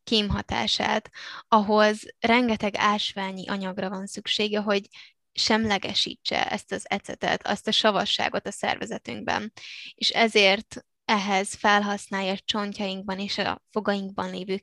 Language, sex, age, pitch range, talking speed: Hungarian, female, 10-29, 200-225 Hz, 110 wpm